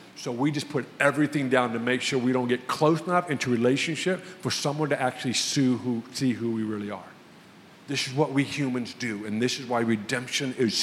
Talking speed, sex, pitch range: 205 wpm, male, 130-170 Hz